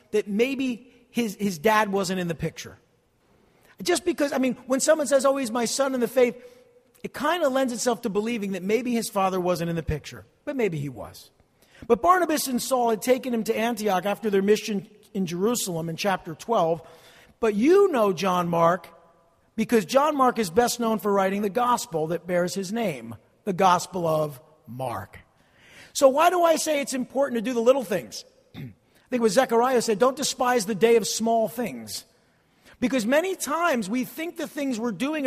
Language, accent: English, American